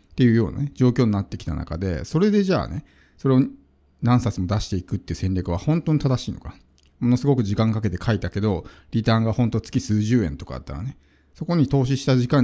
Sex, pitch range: male, 95-140 Hz